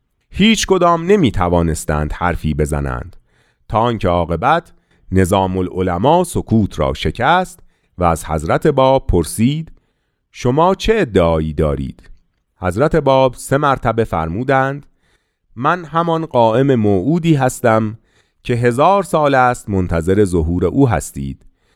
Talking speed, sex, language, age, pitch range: 115 wpm, male, Persian, 40-59, 90-145 Hz